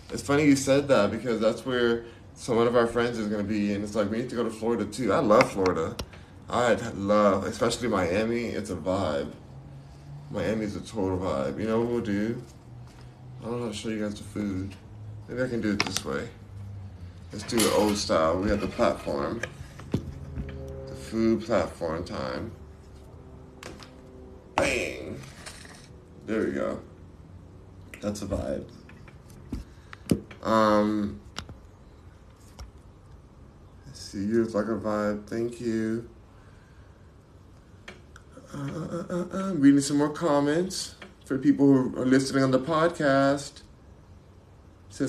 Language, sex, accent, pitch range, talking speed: English, male, American, 95-120 Hz, 140 wpm